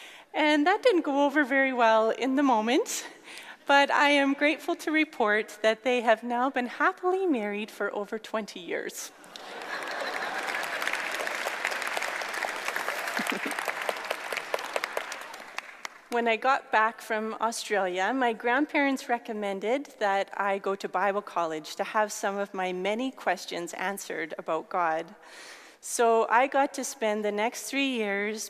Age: 30-49